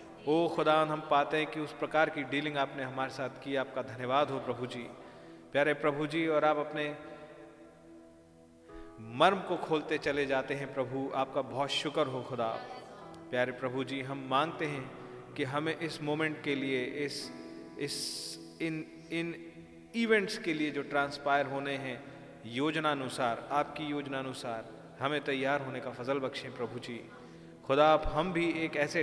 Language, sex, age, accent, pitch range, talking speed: Hindi, male, 40-59, native, 130-150 Hz, 165 wpm